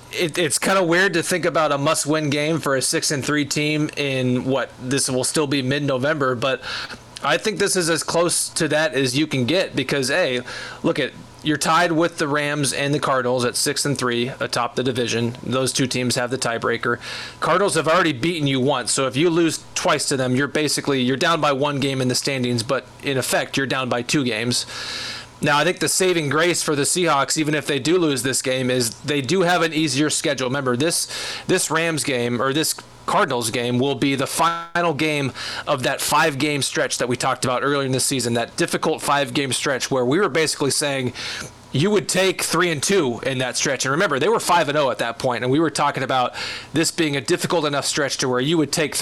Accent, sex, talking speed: American, male, 220 wpm